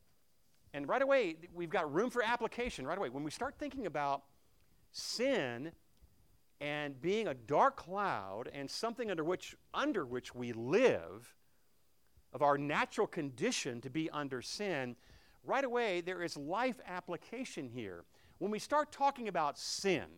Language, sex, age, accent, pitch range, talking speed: English, male, 50-69, American, 140-230 Hz, 150 wpm